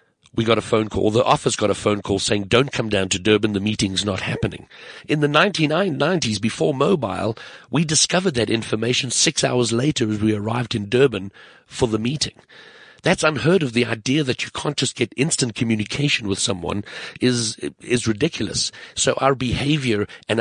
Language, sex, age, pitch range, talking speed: English, male, 60-79, 105-135 Hz, 180 wpm